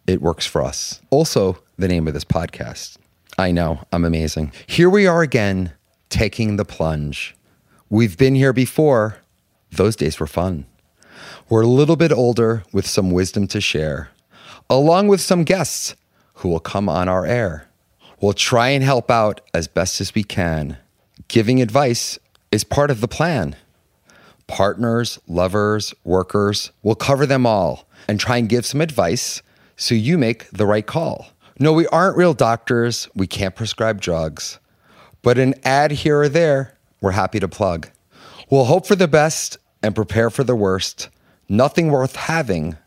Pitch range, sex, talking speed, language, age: 95-135 Hz, male, 165 wpm, English, 30-49